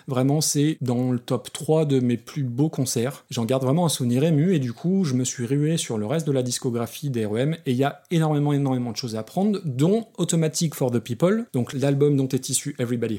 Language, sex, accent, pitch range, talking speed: French, male, French, 125-155 Hz, 235 wpm